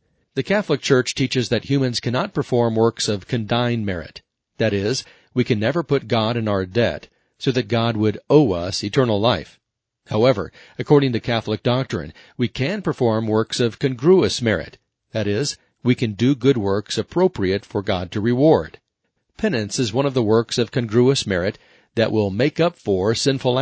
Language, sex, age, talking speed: English, male, 40-59, 175 wpm